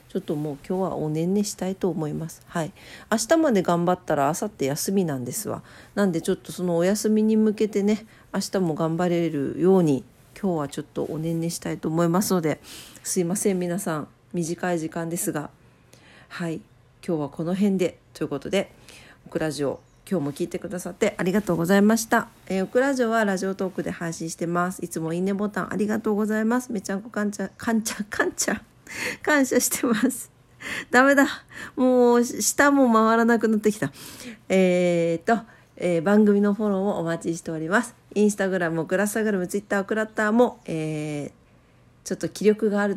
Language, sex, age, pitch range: Japanese, female, 50-69, 165-210 Hz